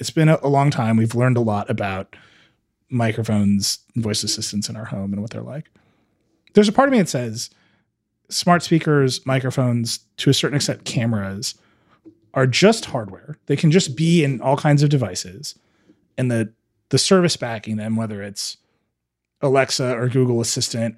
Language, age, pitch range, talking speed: English, 30-49, 110-145 Hz, 170 wpm